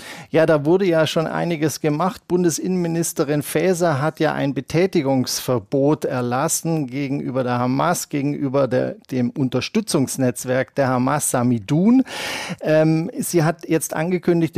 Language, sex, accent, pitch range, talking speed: German, male, German, 130-160 Hz, 120 wpm